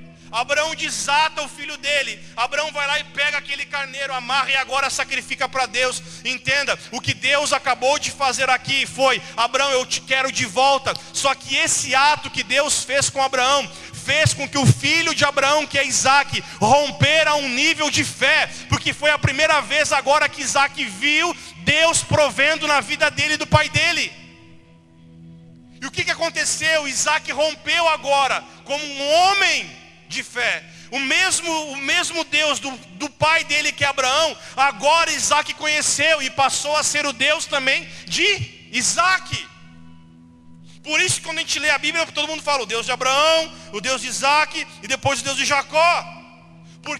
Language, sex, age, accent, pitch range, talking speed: Portuguese, male, 30-49, Brazilian, 260-305 Hz, 175 wpm